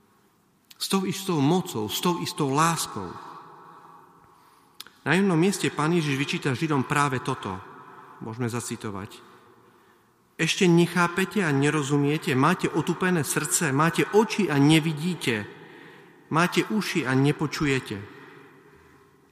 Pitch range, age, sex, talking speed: 120-160 Hz, 40-59, male, 105 wpm